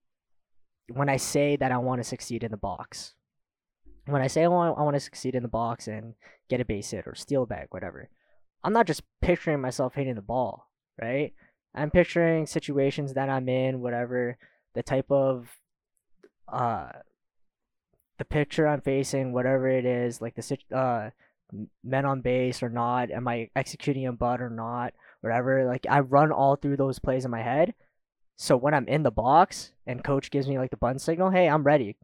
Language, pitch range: English, 120-140 Hz